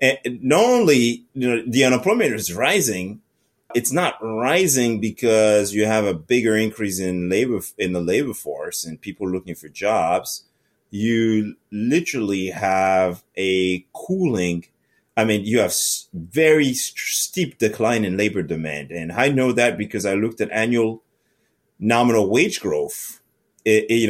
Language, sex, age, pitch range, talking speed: English, male, 30-49, 100-130 Hz, 135 wpm